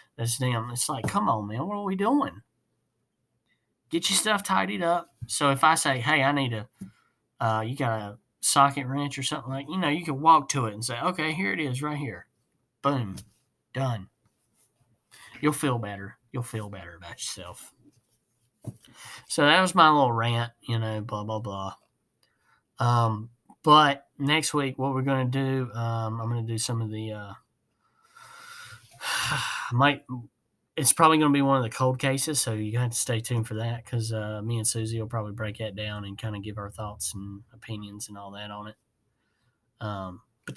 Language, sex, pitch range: English, male, 110-140 Hz